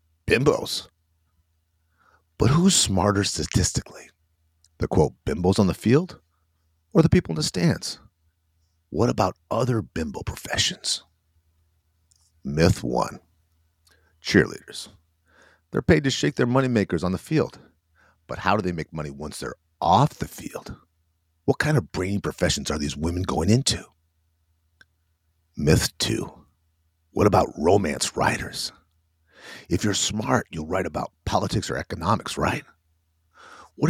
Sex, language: male, English